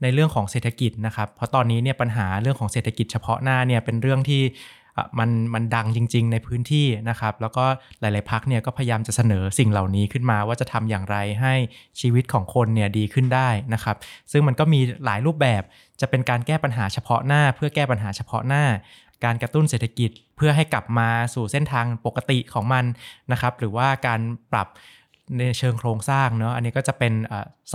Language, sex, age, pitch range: Thai, male, 20-39, 115-135 Hz